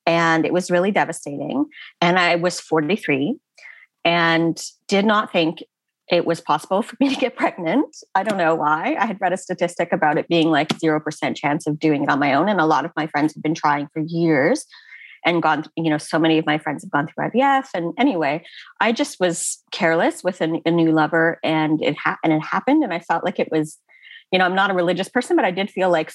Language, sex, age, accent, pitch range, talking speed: English, female, 30-49, American, 160-200 Hz, 235 wpm